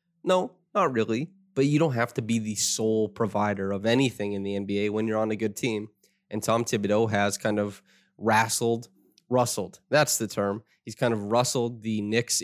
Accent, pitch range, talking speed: American, 105-120 Hz, 195 wpm